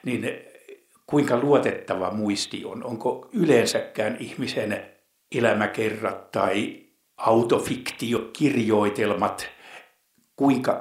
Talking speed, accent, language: 65 wpm, native, Finnish